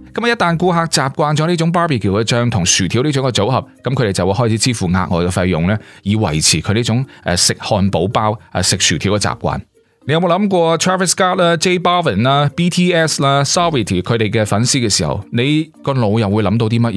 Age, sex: 30-49, male